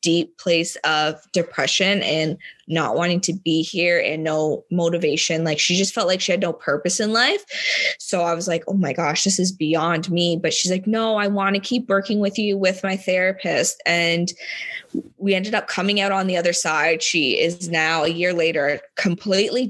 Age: 20-39